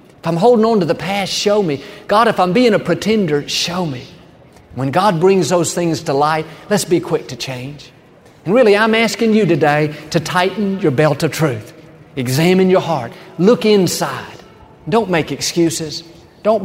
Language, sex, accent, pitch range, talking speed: English, male, American, 150-205 Hz, 180 wpm